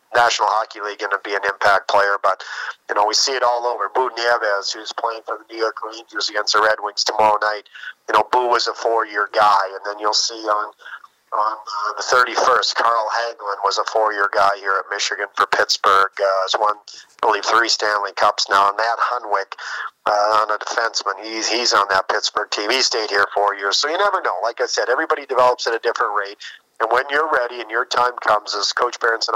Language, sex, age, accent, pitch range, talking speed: English, male, 40-59, American, 105-120 Hz, 225 wpm